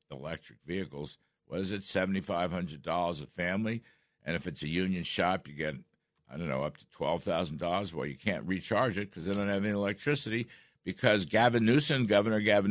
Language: English